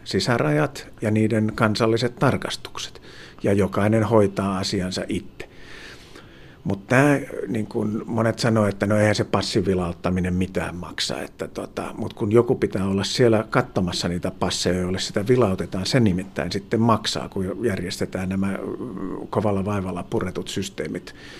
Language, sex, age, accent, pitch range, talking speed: Finnish, male, 50-69, native, 95-125 Hz, 125 wpm